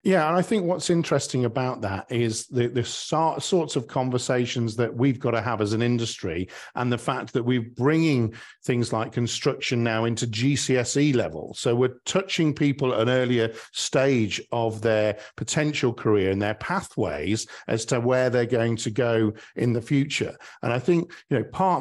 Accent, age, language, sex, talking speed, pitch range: British, 50-69, English, male, 185 wpm, 115-140 Hz